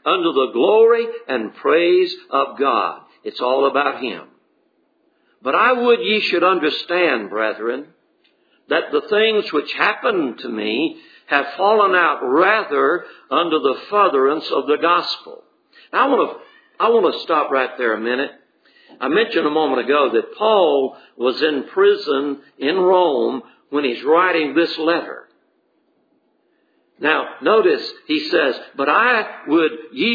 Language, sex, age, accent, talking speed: English, male, 60-79, American, 145 wpm